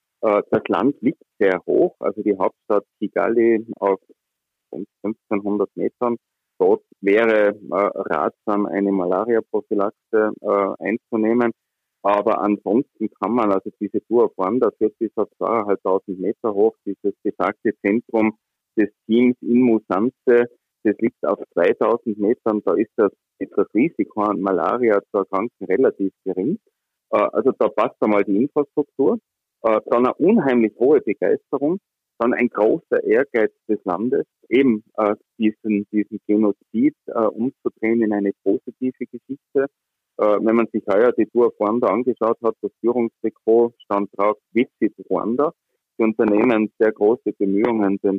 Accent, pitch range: Austrian, 100-120 Hz